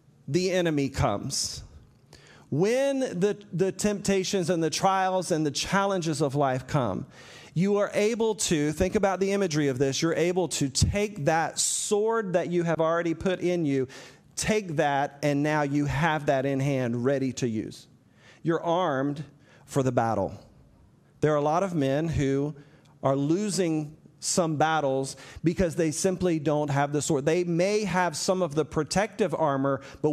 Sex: male